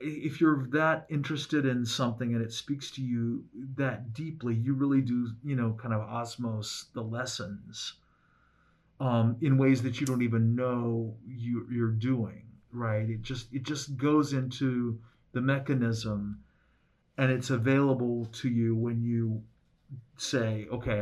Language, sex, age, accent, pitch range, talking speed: English, male, 40-59, American, 115-145 Hz, 150 wpm